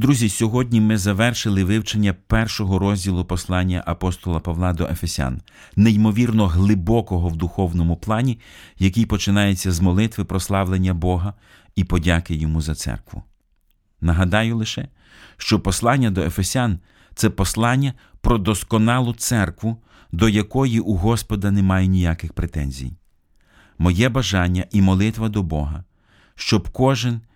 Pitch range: 85-110 Hz